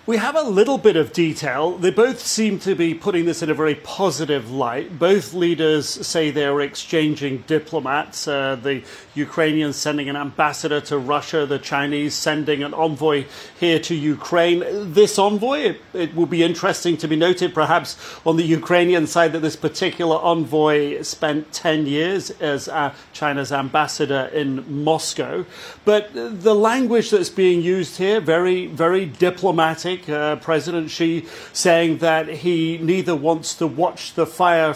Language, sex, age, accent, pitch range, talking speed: English, male, 40-59, British, 155-185 Hz, 155 wpm